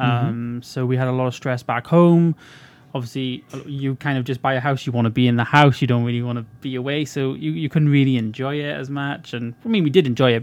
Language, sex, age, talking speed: English, male, 20-39, 275 wpm